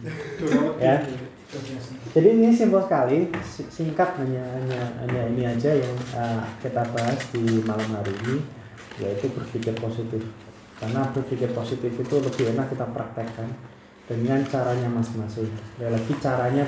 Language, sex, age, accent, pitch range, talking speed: Indonesian, male, 20-39, native, 115-130 Hz, 125 wpm